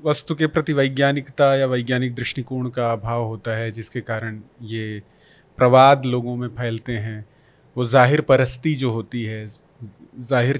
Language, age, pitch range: Hindi, 30-49, 115-140 Hz